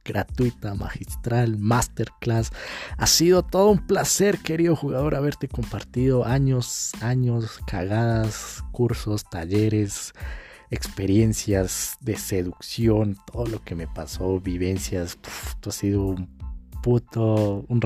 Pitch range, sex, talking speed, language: 95-115 Hz, male, 110 wpm, Spanish